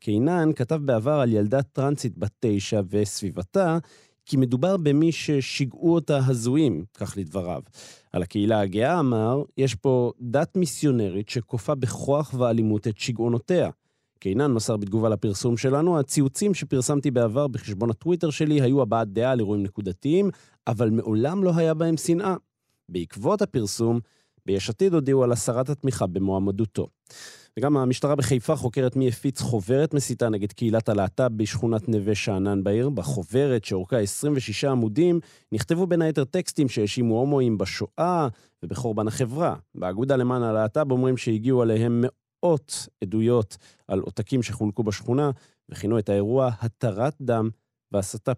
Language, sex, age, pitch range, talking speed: Hebrew, male, 30-49, 110-145 Hz, 135 wpm